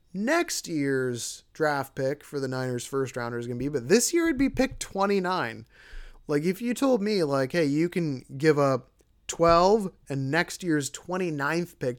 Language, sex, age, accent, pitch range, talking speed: English, male, 20-39, American, 130-165 Hz, 185 wpm